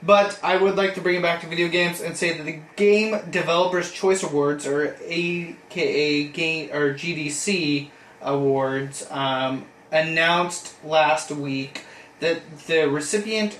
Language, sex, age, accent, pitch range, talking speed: English, male, 20-39, American, 140-175 Hz, 135 wpm